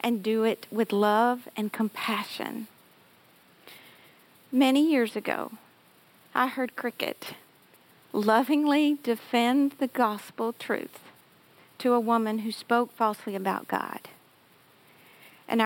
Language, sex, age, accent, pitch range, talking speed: English, female, 50-69, American, 225-280 Hz, 105 wpm